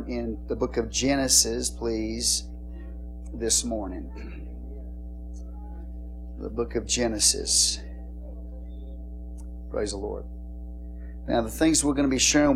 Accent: American